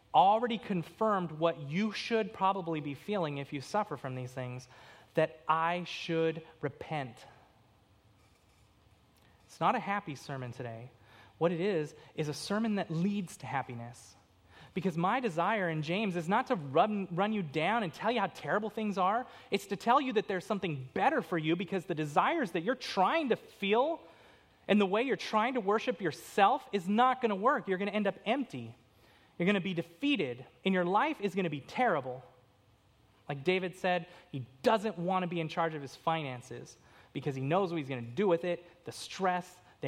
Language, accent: English, American